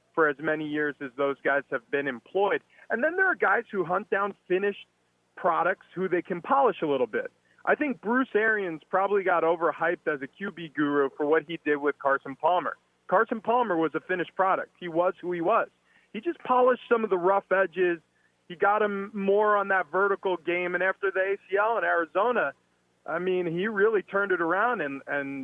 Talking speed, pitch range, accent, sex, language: 205 wpm, 165-240 Hz, American, male, English